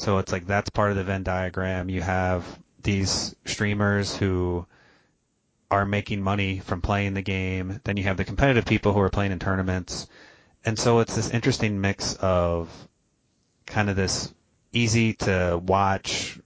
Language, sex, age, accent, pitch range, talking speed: English, male, 30-49, American, 95-105 Hz, 165 wpm